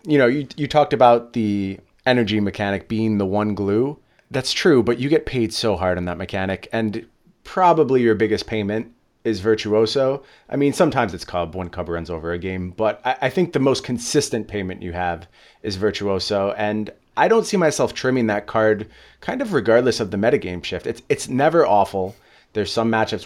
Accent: American